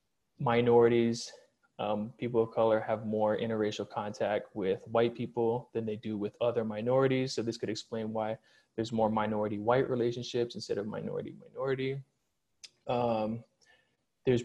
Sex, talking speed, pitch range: male, 140 wpm, 110-125 Hz